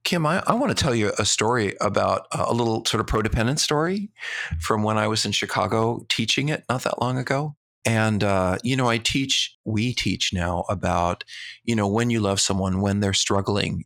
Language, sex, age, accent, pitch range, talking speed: English, male, 40-59, American, 100-125 Hz, 205 wpm